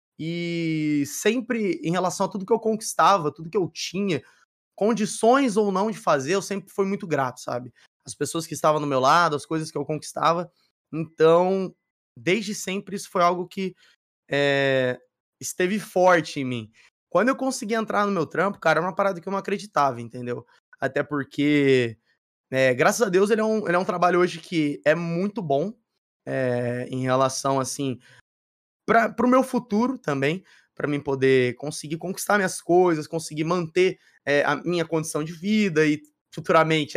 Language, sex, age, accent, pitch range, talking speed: Portuguese, male, 20-39, Brazilian, 140-195 Hz, 165 wpm